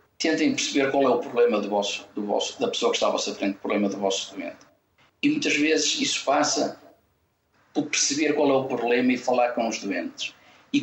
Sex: male